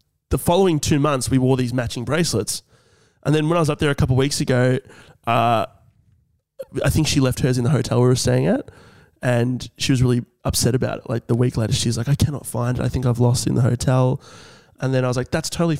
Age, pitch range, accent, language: 20-39, 120-140 Hz, Australian, English